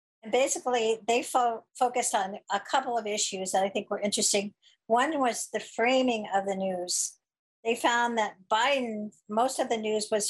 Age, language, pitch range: 50-69, English, 195-225 Hz